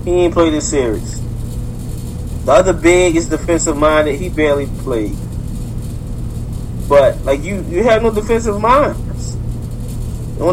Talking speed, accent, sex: 130 wpm, American, male